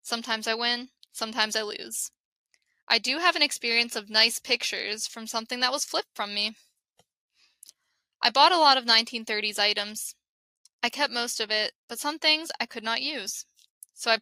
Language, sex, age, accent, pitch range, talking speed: English, female, 10-29, American, 220-250 Hz, 175 wpm